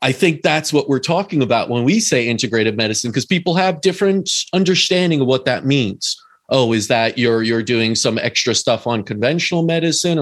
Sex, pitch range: male, 110-145 Hz